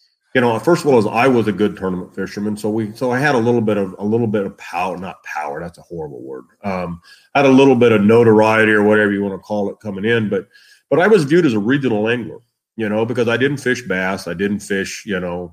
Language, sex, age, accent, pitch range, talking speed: English, male, 40-59, American, 100-135 Hz, 270 wpm